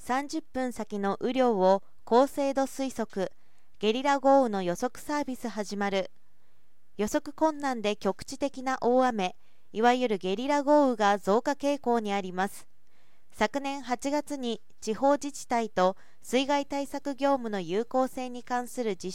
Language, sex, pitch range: Japanese, female, 205-275 Hz